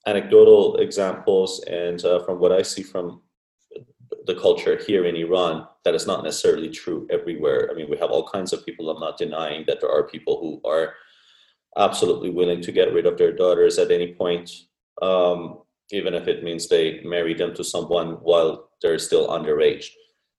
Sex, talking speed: male, 185 wpm